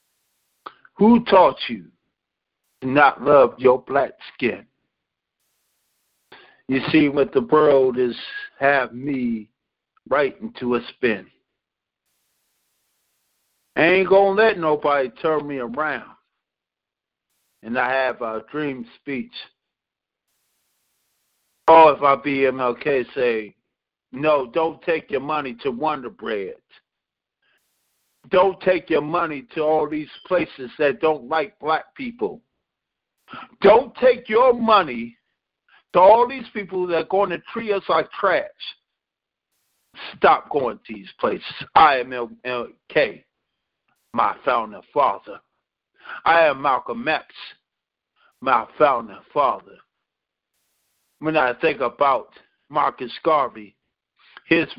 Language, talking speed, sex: English, 115 wpm, male